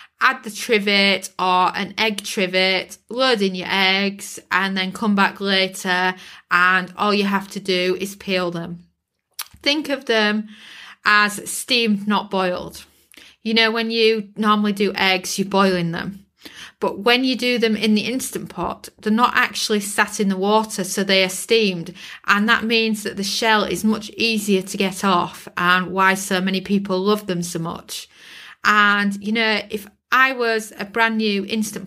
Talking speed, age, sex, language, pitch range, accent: 175 wpm, 30-49, female, English, 185-220 Hz, British